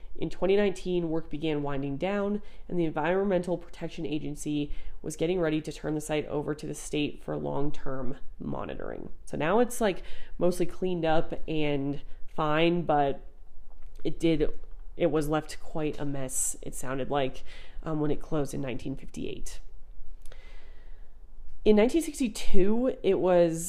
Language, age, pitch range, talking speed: English, 30-49, 140-180 Hz, 135 wpm